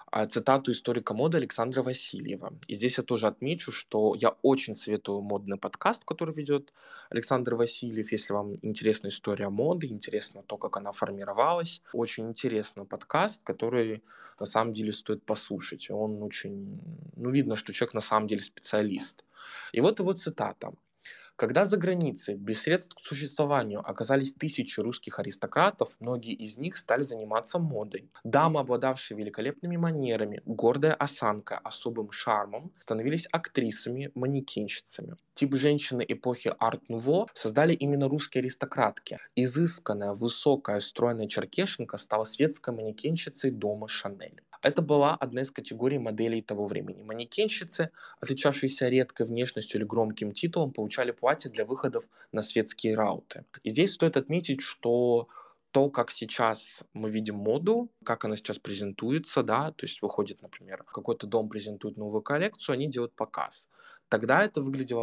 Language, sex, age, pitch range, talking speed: Russian, male, 20-39, 110-145 Hz, 140 wpm